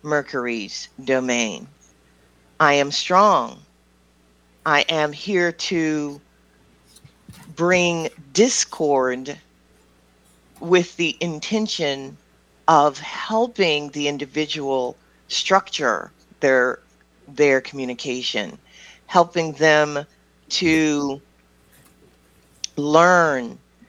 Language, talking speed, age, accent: English, 65 wpm, 40-59, American